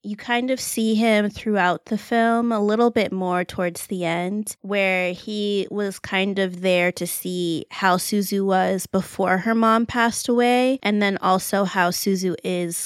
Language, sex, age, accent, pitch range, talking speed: English, female, 20-39, American, 190-240 Hz, 175 wpm